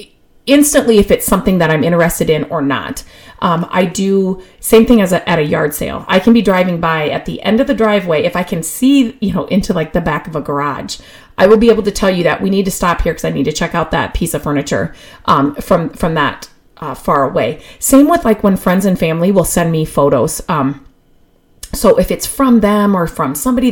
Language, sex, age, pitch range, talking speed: English, female, 30-49, 165-215 Hz, 240 wpm